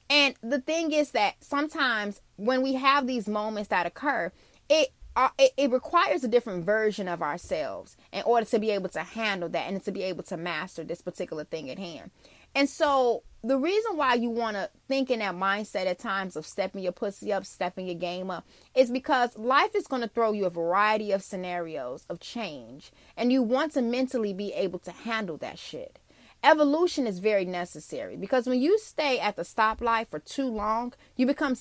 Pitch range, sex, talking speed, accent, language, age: 205-275 Hz, female, 200 wpm, American, English, 20-39